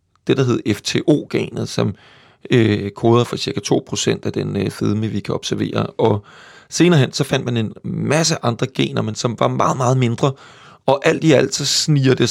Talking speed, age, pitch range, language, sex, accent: 195 wpm, 30-49, 115-135 Hz, Danish, male, native